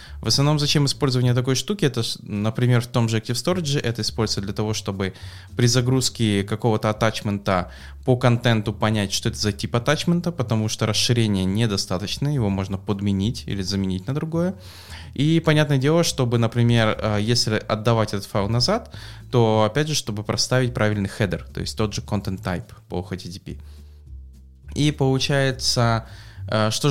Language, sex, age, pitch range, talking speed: English, male, 20-39, 100-125 Hz, 155 wpm